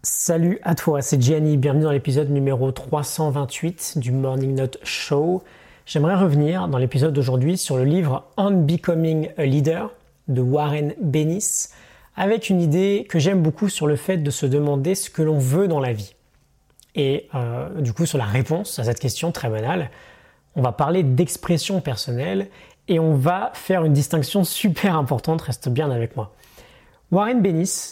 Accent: French